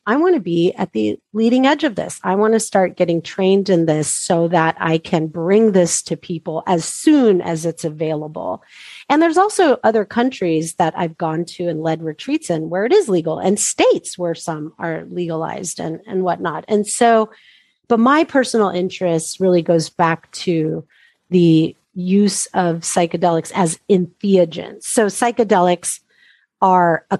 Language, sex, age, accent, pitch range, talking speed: English, female, 40-59, American, 165-210 Hz, 170 wpm